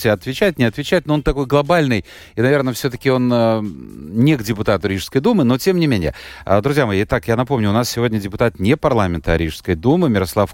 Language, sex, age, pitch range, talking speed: Russian, male, 30-49, 100-135 Hz, 195 wpm